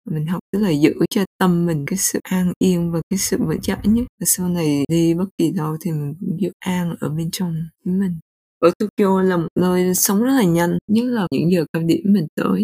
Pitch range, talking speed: 165-210 Hz, 240 wpm